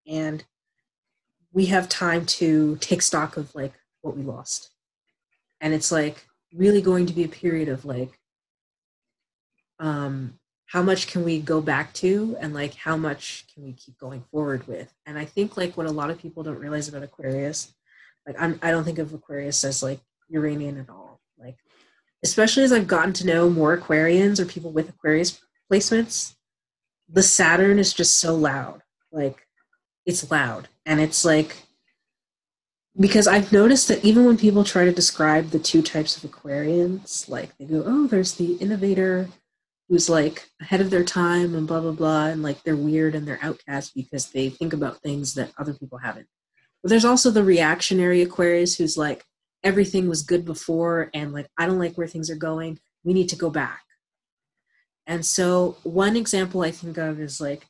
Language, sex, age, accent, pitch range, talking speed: English, female, 30-49, American, 150-180 Hz, 180 wpm